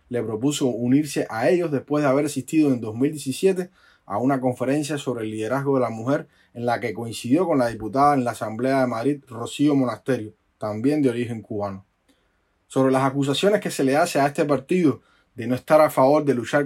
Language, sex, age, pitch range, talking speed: Spanish, male, 20-39, 120-150 Hz, 200 wpm